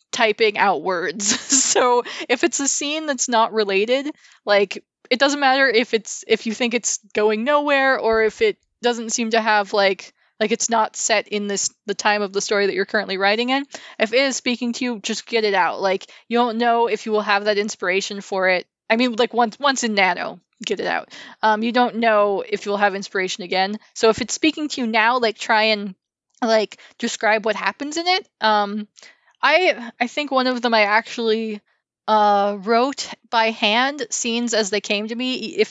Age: 20-39